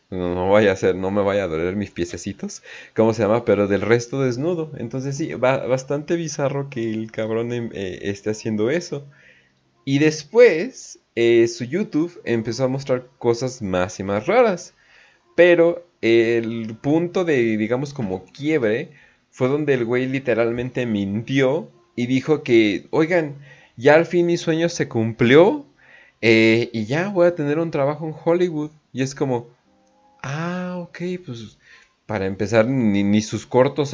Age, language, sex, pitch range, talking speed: 30-49, Spanish, male, 100-145 Hz, 155 wpm